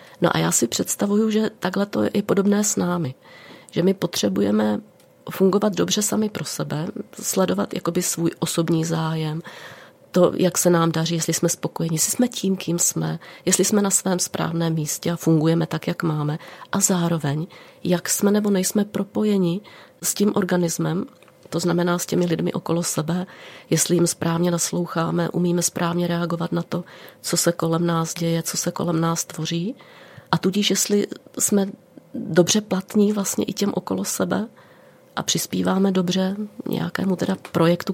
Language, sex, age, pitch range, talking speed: Czech, female, 30-49, 165-190 Hz, 160 wpm